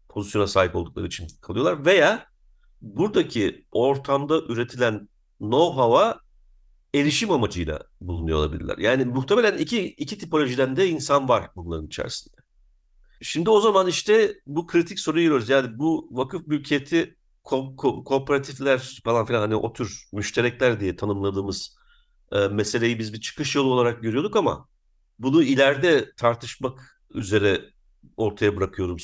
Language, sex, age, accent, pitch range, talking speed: Turkish, male, 50-69, native, 105-135 Hz, 130 wpm